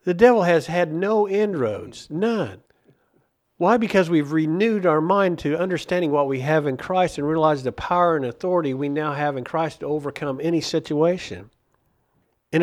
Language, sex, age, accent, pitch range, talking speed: English, male, 50-69, American, 140-175 Hz, 170 wpm